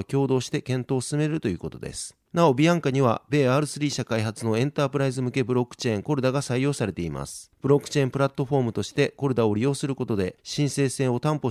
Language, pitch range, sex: Japanese, 120-145 Hz, male